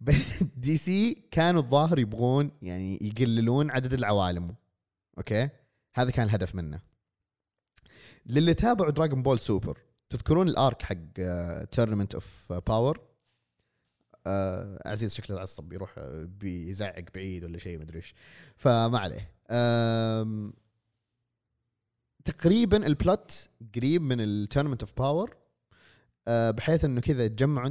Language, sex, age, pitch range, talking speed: Arabic, male, 30-49, 100-135 Hz, 105 wpm